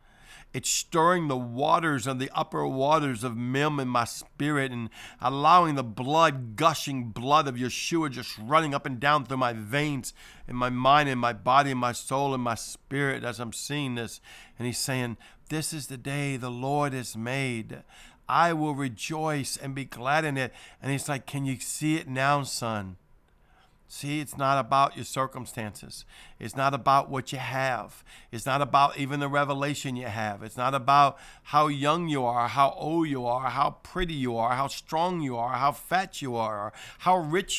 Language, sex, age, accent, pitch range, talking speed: English, male, 50-69, American, 125-150 Hz, 190 wpm